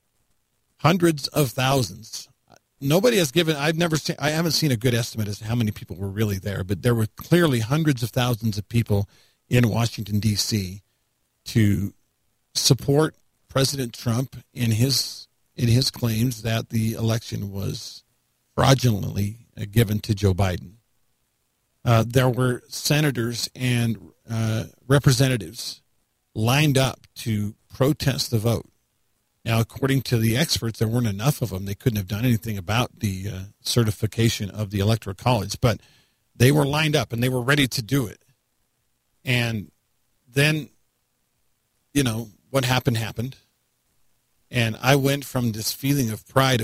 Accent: American